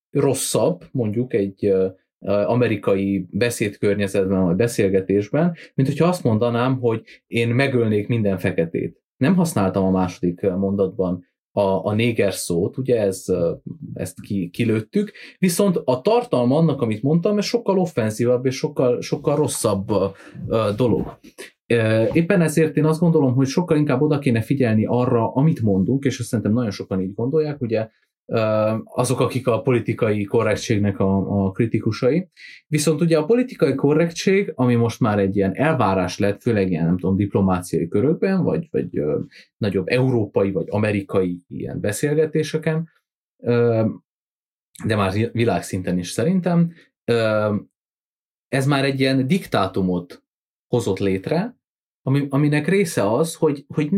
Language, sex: Hungarian, male